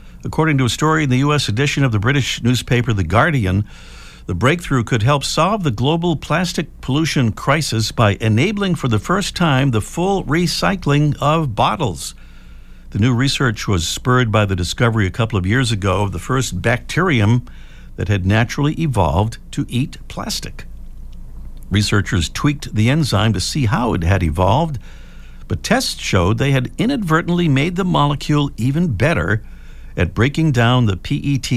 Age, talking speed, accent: 60-79, 160 wpm, American